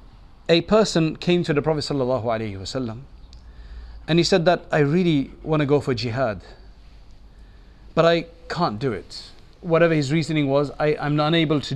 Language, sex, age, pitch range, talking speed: English, male, 40-59, 115-165 Hz, 155 wpm